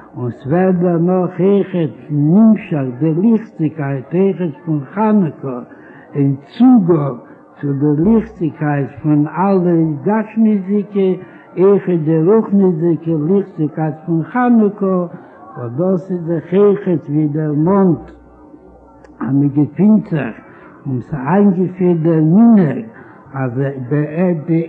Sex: male